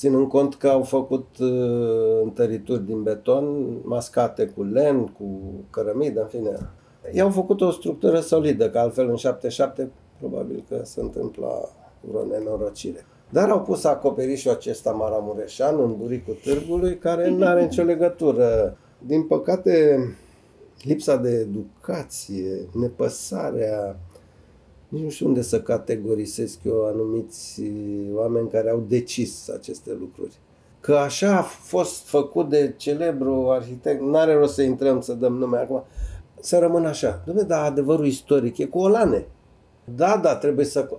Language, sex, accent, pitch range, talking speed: Romanian, male, native, 115-150 Hz, 140 wpm